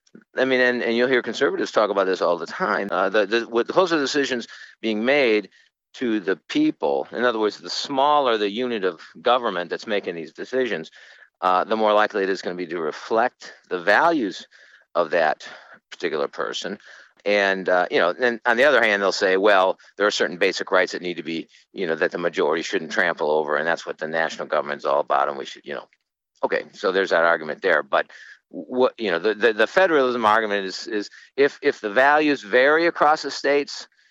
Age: 50-69